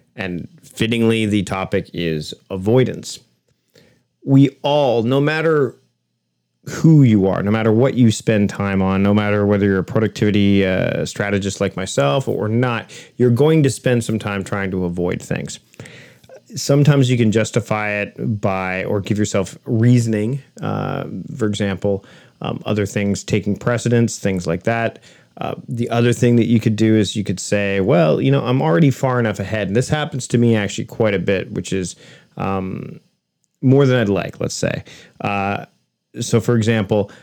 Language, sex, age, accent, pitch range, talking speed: English, male, 30-49, American, 100-120 Hz, 170 wpm